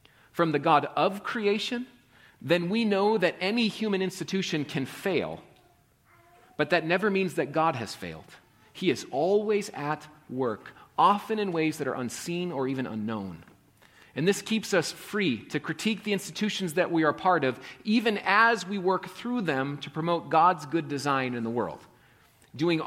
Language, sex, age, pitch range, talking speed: English, male, 40-59, 140-190 Hz, 170 wpm